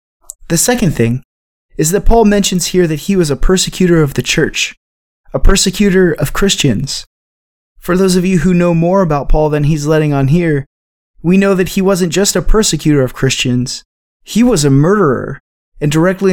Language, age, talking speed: English, 20-39, 185 wpm